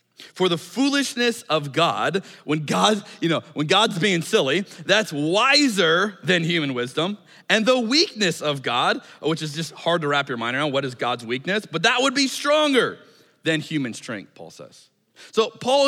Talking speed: 170 wpm